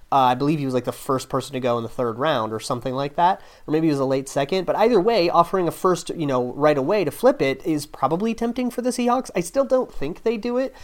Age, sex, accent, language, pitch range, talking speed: 30-49, male, American, English, 130-160 Hz, 290 wpm